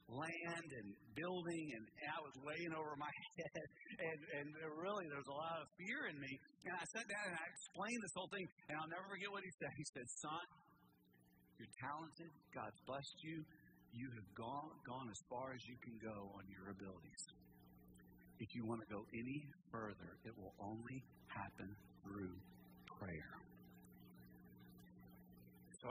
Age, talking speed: 50-69, 170 wpm